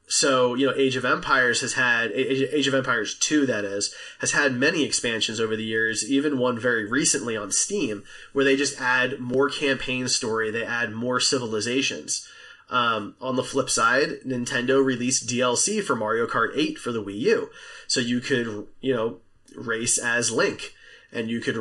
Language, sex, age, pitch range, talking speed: English, male, 20-39, 115-140 Hz, 180 wpm